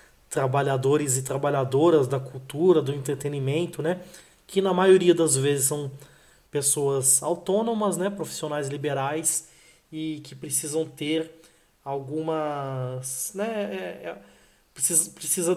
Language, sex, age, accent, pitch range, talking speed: Portuguese, male, 20-39, Brazilian, 140-170 Hz, 110 wpm